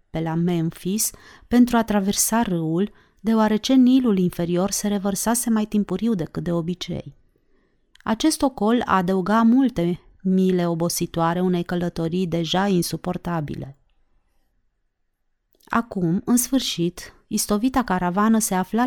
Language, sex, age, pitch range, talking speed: Romanian, female, 30-49, 170-225 Hz, 110 wpm